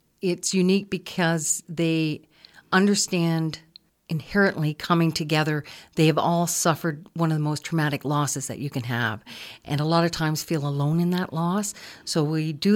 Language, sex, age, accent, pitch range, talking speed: English, female, 50-69, American, 145-165 Hz, 165 wpm